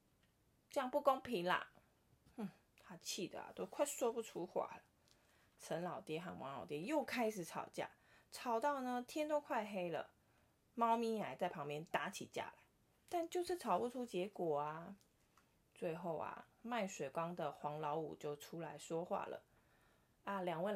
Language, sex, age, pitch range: Chinese, female, 20-39, 165-225 Hz